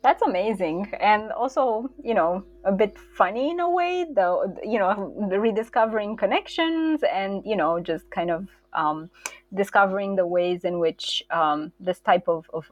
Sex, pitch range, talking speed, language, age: female, 175-235 Hz, 165 wpm, English, 20-39